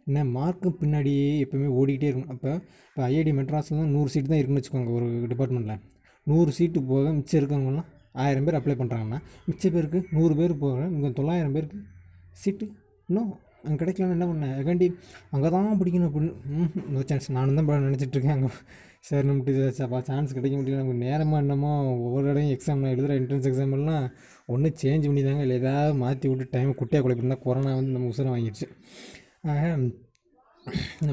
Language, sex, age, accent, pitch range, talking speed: Tamil, male, 20-39, native, 130-155 Hz, 160 wpm